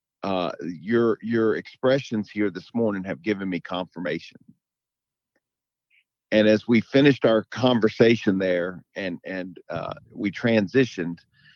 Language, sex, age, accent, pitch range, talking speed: English, male, 40-59, American, 100-115 Hz, 120 wpm